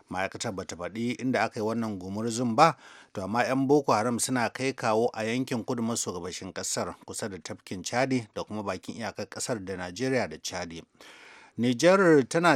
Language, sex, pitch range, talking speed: English, male, 105-125 Hz, 170 wpm